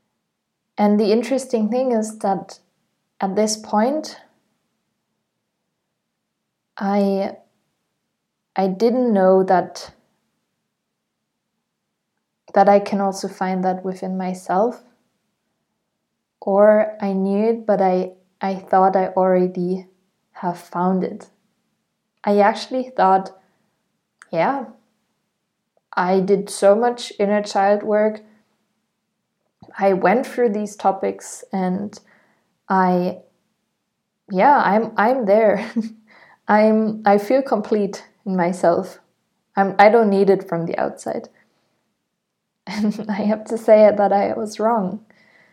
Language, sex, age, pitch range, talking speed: English, female, 20-39, 190-220 Hz, 105 wpm